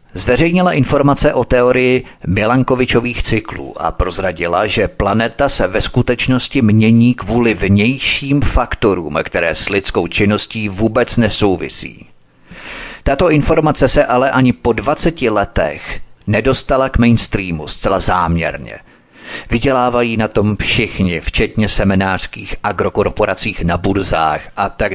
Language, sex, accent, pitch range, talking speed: Czech, male, native, 100-125 Hz, 115 wpm